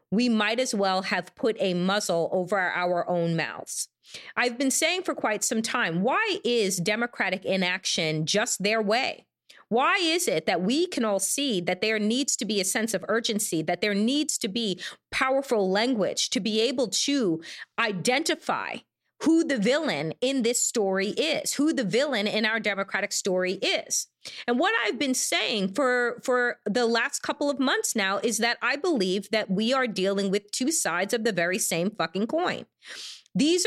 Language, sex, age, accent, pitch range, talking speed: English, female, 30-49, American, 205-270 Hz, 180 wpm